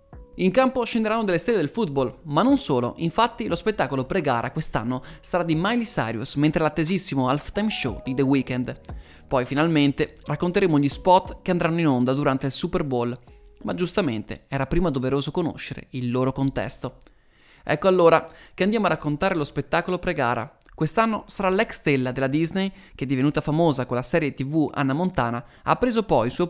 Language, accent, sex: Italian, native, male